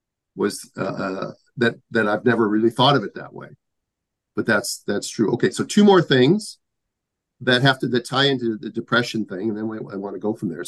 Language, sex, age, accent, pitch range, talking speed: English, male, 50-69, American, 115-135 Hz, 210 wpm